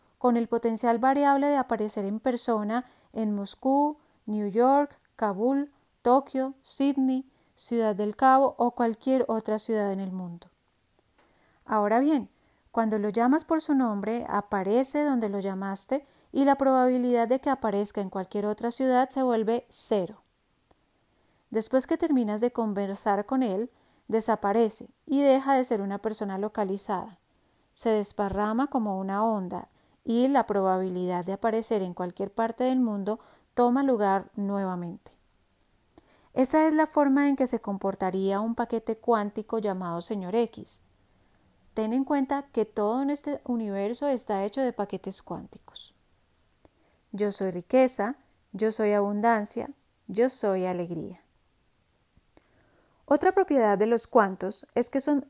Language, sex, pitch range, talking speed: Spanish, female, 205-260 Hz, 140 wpm